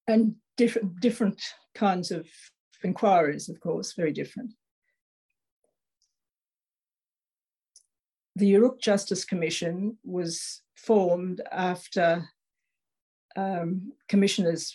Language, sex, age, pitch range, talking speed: English, female, 50-69, 170-210 Hz, 75 wpm